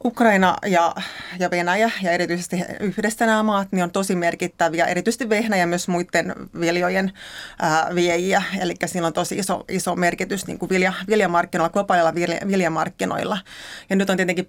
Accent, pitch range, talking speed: native, 175-200 Hz, 145 wpm